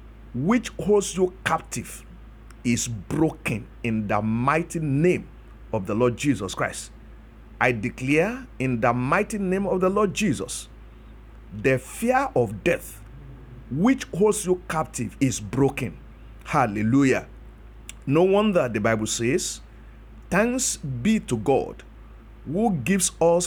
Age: 50-69